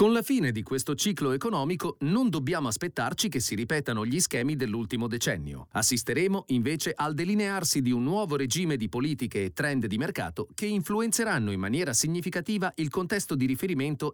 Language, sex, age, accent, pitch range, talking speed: Italian, male, 40-59, native, 125-180 Hz, 170 wpm